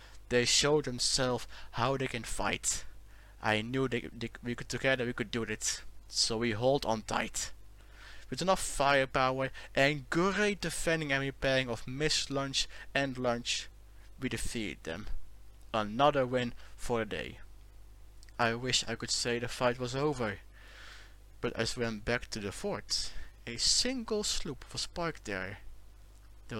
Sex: male